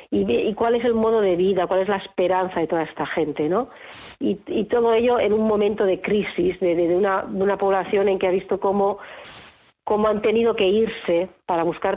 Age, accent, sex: 40-59, Spanish, female